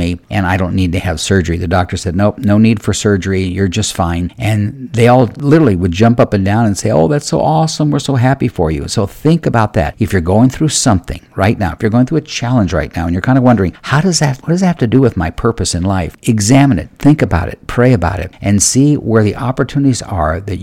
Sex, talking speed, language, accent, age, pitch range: male, 265 wpm, English, American, 50-69, 95-120 Hz